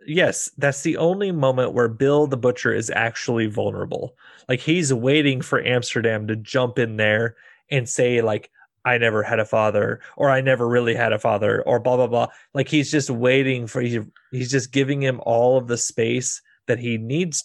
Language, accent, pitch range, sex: English, American, 115-135 Hz, male